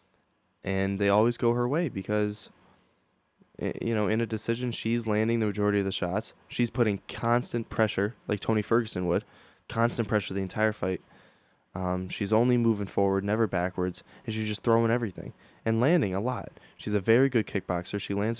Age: 10-29